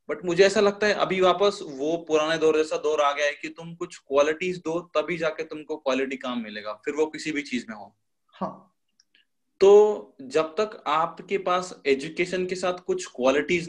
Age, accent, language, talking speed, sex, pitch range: 20-39, native, Hindi, 190 wpm, male, 140-180 Hz